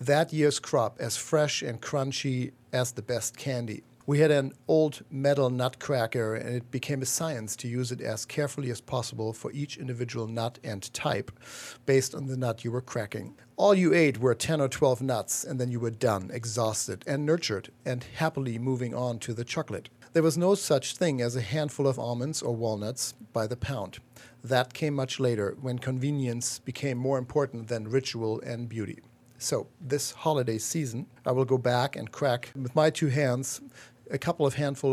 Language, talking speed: English, 190 wpm